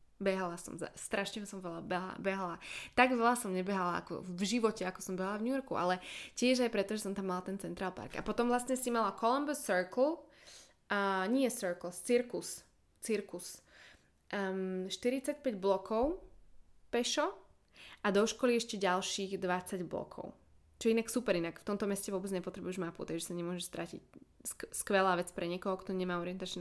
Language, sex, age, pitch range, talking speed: Slovak, female, 20-39, 180-225 Hz, 175 wpm